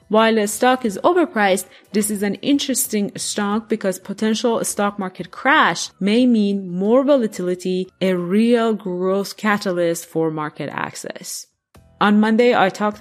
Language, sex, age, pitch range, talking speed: English, female, 30-49, 185-230 Hz, 140 wpm